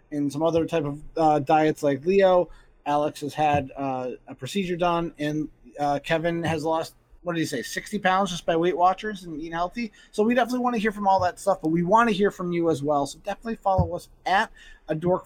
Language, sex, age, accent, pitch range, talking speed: English, male, 30-49, American, 135-170 Hz, 230 wpm